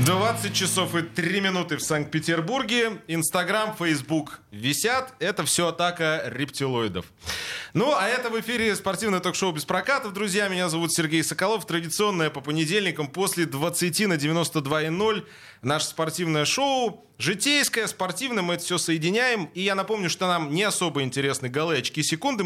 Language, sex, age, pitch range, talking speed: Russian, male, 20-39, 145-190 Hz, 145 wpm